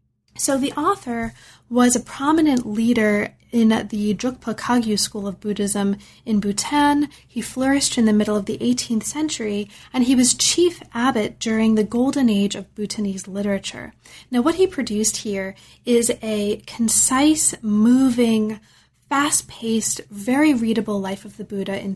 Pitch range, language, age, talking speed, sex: 205-250 Hz, English, 30-49, 150 wpm, female